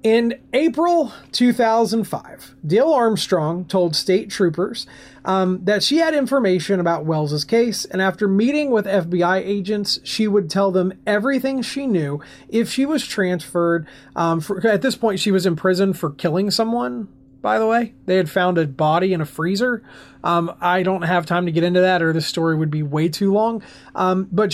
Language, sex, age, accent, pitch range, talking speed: English, male, 30-49, American, 170-225 Hz, 180 wpm